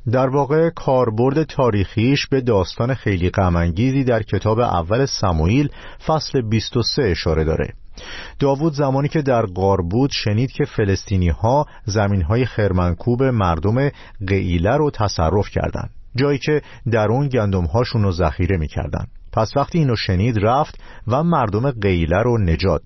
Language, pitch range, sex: Persian, 95-135 Hz, male